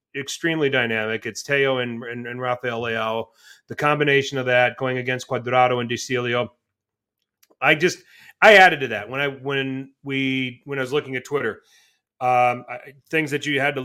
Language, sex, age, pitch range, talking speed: English, male, 30-49, 130-150 Hz, 180 wpm